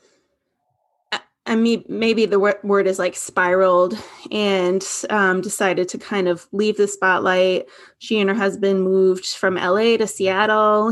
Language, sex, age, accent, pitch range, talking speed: English, female, 20-39, American, 185-215 Hz, 145 wpm